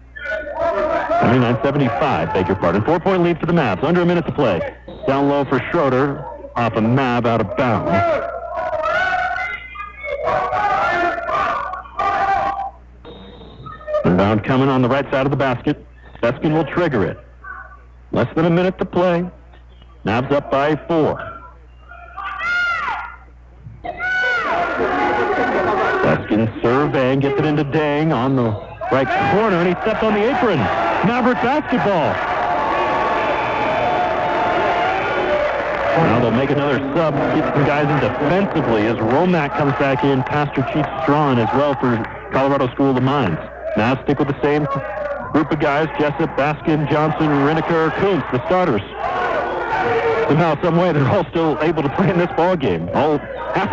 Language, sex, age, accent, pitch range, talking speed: English, male, 60-79, American, 135-195 Hz, 135 wpm